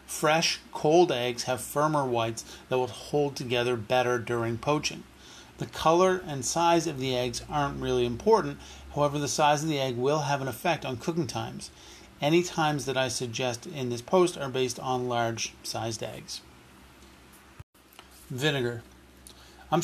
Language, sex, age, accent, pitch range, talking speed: English, male, 40-59, American, 125-155 Hz, 155 wpm